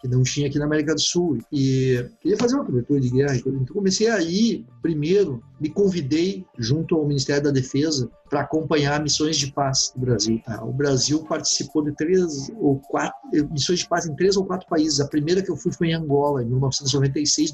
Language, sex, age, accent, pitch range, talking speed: Portuguese, male, 50-69, Brazilian, 135-170 Hz, 195 wpm